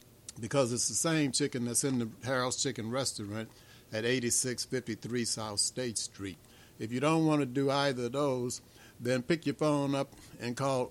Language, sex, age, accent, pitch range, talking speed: English, male, 60-79, American, 115-135 Hz, 175 wpm